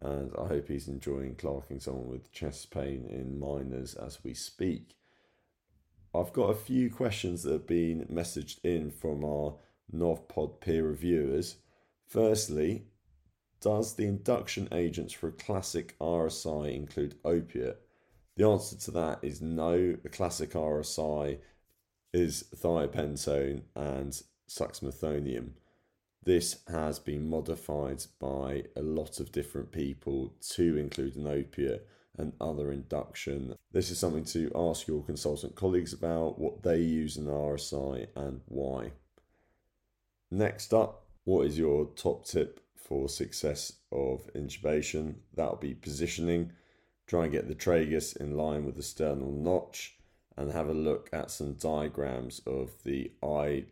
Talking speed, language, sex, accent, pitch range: 135 wpm, English, male, British, 70-85 Hz